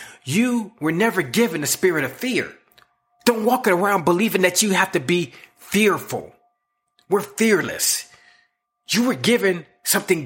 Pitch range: 170-235 Hz